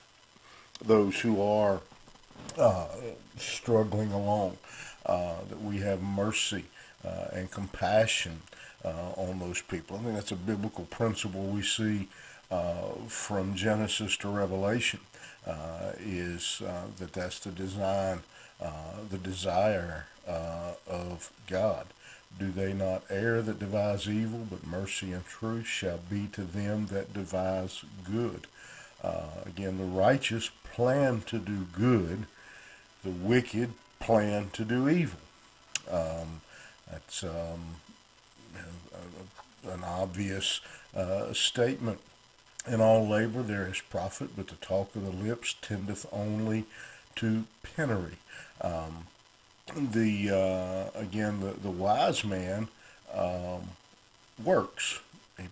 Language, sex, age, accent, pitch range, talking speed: English, male, 50-69, American, 95-110 Hz, 120 wpm